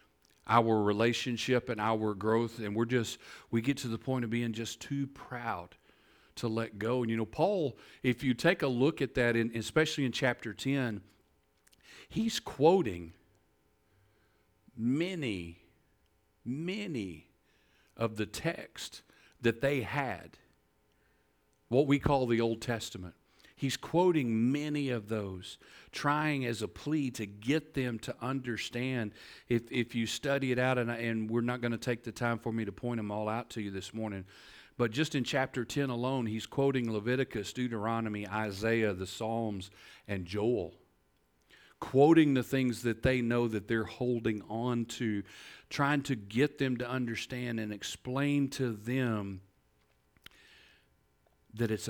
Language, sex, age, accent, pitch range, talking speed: English, male, 50-69, American, 105-130 Hz, 150 wpm